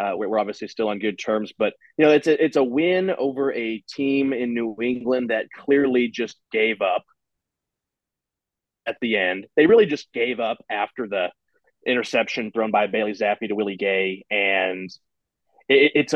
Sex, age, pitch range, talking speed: male, 30-49, 110-135 Hz, 170 wpm